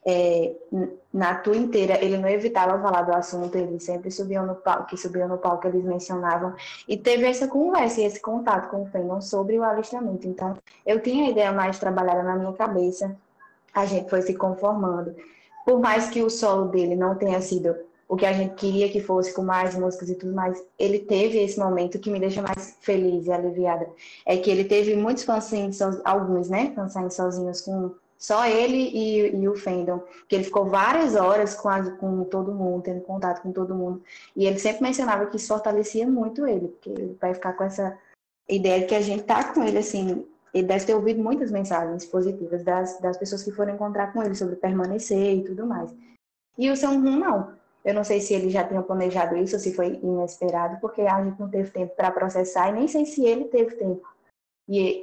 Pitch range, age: 185-210 Hz, 10-29